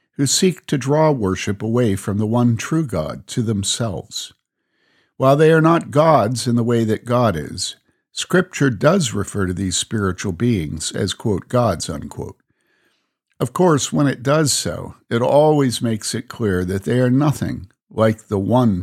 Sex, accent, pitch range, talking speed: male, American, 100-135 Hz, 170 wpm